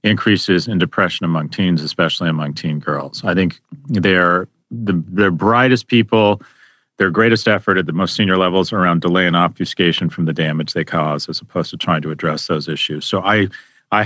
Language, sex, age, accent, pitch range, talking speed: English, male, 40-59, American, 85-105 Hz, 195 wpm